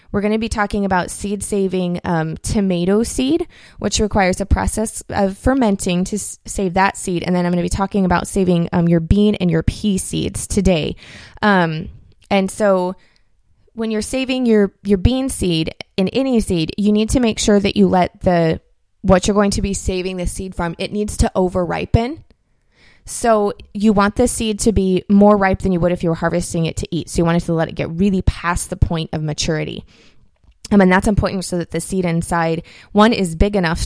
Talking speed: 215 wpm